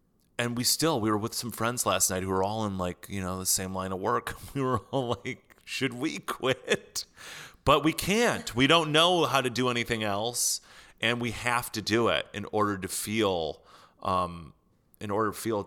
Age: 30-49